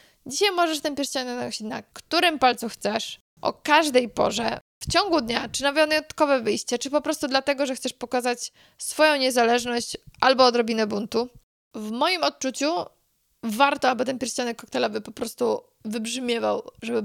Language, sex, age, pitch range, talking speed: Polish, female, 20-39, 225-275 Hz, 150 wpm